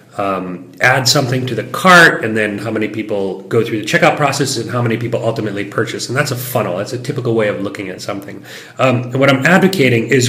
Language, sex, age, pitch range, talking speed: English, male, 30-49, 115-150 Hz, 235 wpm